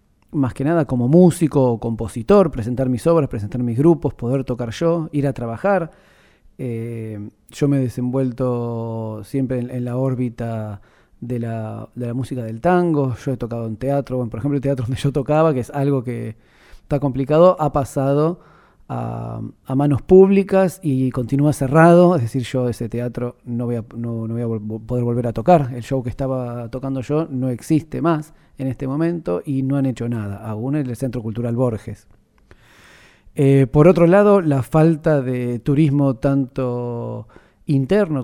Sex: male